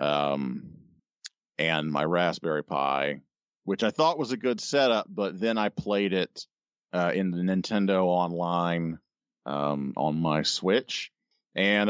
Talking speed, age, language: 135 wpm, 40-59, English